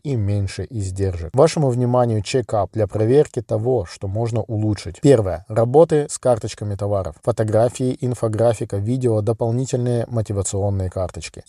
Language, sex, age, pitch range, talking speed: Russian, male, 20-39, 105-125 Hz, 120 wpm